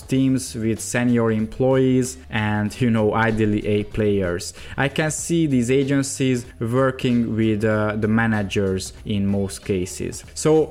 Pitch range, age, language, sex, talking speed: 120-140 Hz, 20-39, English, male, 135 wpm